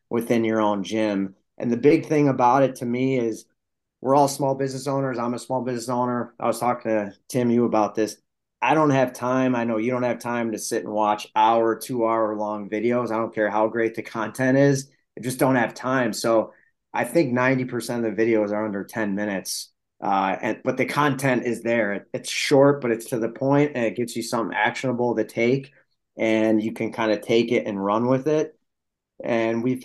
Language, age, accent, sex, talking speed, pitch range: English, 30-49, American, male, 220 wpm, 110-125 Hz